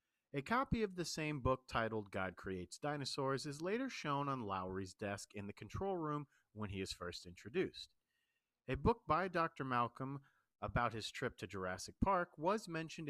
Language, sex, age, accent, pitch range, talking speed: English, male, 40-59, American, 105-155 Hz, 175 wpm